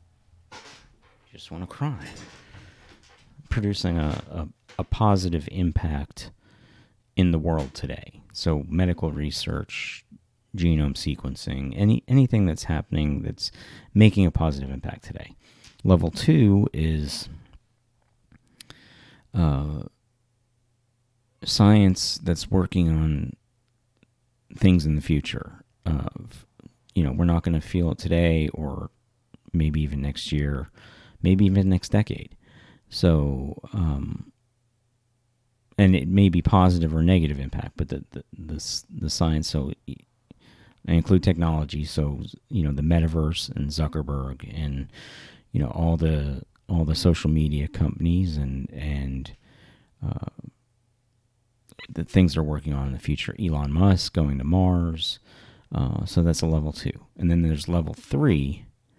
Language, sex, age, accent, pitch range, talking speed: English, male, 40-59, American, 75-105 Hz, 125 wpm